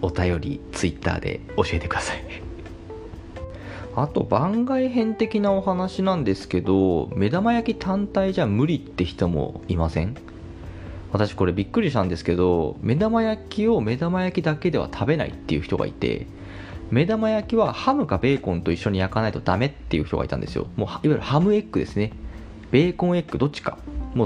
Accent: native